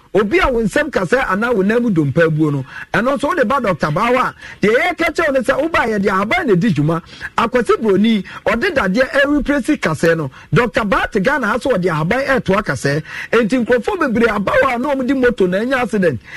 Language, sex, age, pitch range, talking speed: English, male, 50-69, 175-265 Hz, 170 wpm